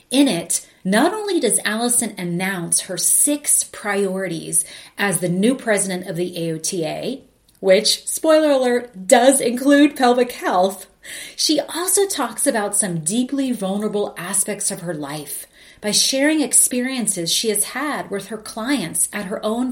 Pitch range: 195-255 Hz